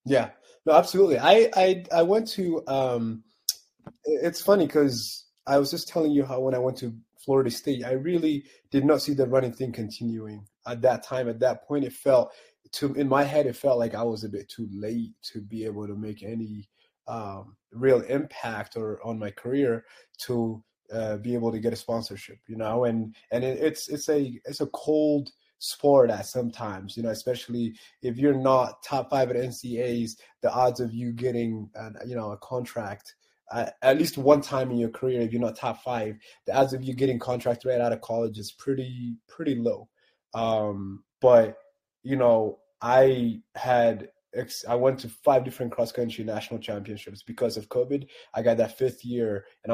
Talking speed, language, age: 195 wpm, English, 20-39